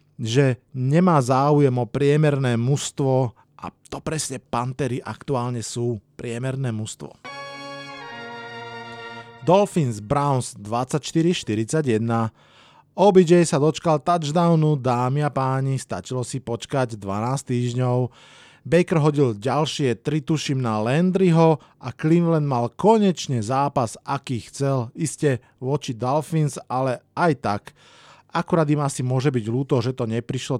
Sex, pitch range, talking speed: male, 120-155 Hz, 110 wpm